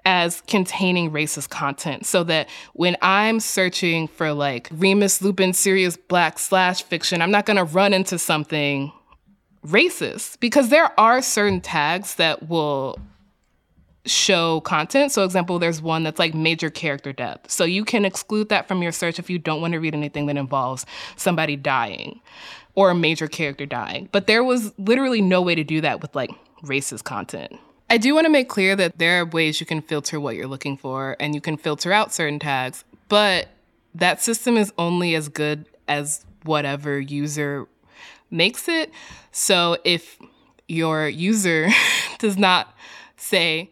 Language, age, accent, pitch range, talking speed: English, 20-39, American, 155-215 Hz, 165 wpm